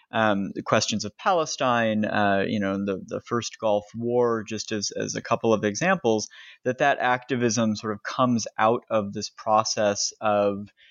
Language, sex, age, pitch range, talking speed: English, male, 30-49, 105-120 Hz, 170 wpm